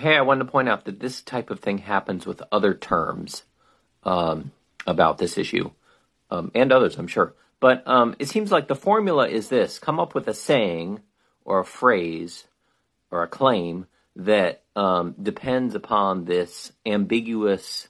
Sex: male